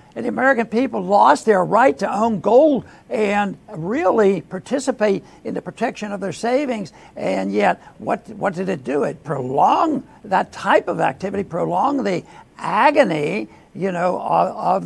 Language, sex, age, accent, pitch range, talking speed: English, male, 60-79, American, 190-235 Hz, 160 wpm